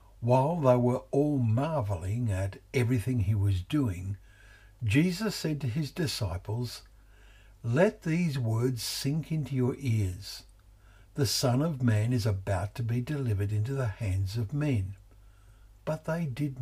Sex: male